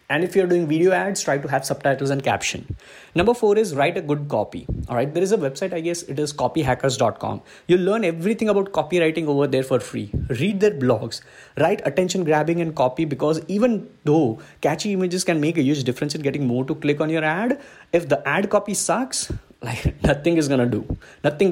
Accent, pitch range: Indian, 140-190 Hz